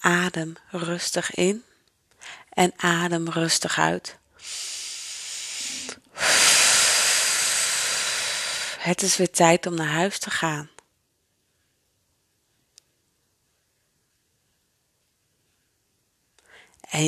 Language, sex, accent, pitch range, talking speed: Dutch, female, Dutch, 170-220 Hz, 60 wpm